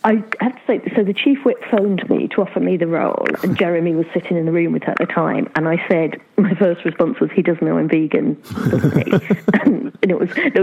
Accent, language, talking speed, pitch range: British, English, 245 wpm, 160-205 Hz